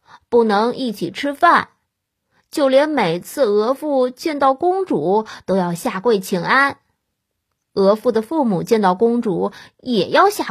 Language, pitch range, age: Chinese, 195-285 Hz, 20-39